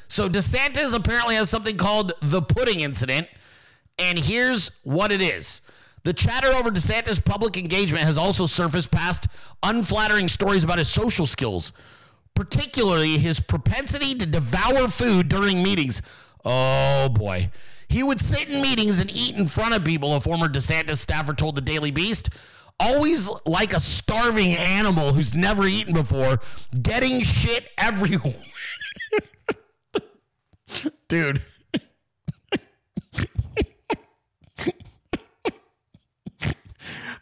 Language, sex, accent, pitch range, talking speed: English, male, American, 155-210 Hz, 115 wpm